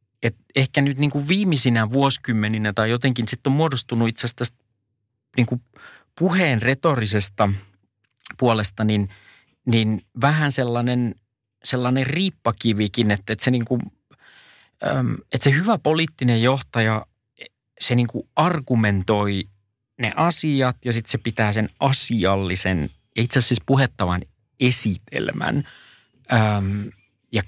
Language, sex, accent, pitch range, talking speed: Finnish, male, native, 105-130 Hz, 110 wpm